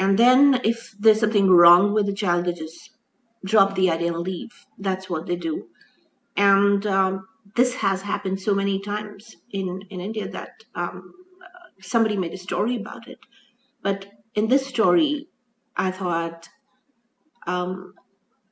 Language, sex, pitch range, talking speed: English, female, 195-250 Hz, 150 wpm